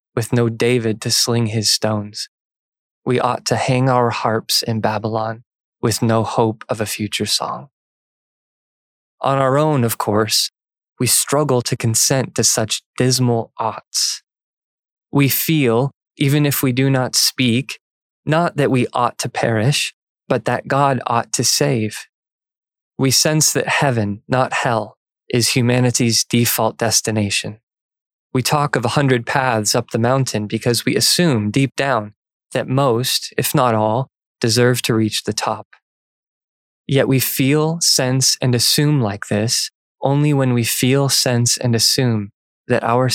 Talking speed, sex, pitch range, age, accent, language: 145 wpm, male, 115-135 Hz, 20-39, American, English